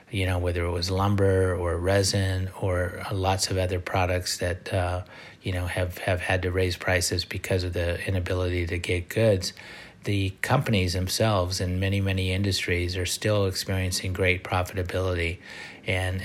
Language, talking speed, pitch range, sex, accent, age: English, 160 wpm, 90-100 Hz, male, American, 30-49